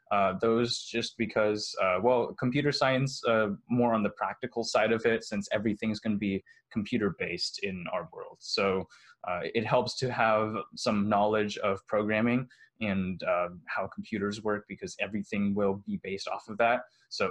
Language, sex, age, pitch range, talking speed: English, male, 20-39, 105-130 Hz, 170 wpm